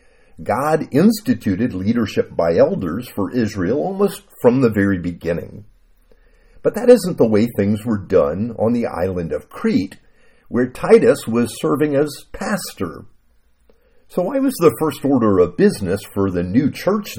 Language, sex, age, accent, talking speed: English, male, 50-69, American, 150 wpm